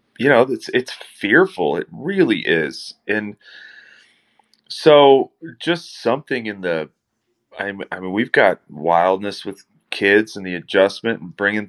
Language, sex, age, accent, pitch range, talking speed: English, male, 30-49, American, 85-110 Hz, 135 wpm